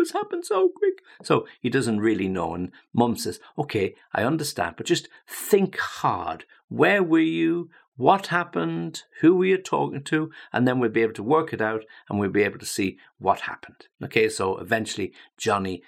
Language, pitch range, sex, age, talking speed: English, 95-155 Hz, male, 50-69, 185 wpm